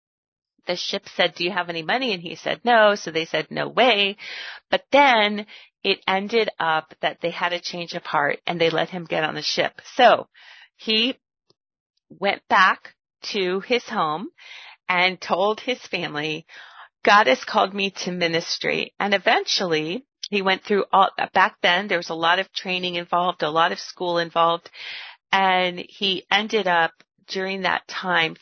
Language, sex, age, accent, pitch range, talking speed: English, female, 40-59, American, 170-205 Hz, 170 wpm